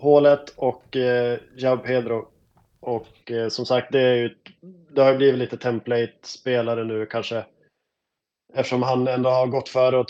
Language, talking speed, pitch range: Swedish, 160 wpm, 120-135 Hz